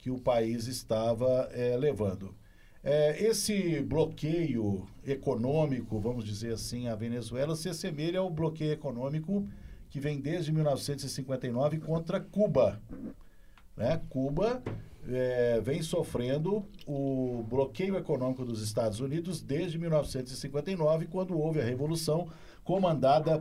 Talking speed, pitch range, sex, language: 115 wpm, 120-160 Hz, male, Portuguese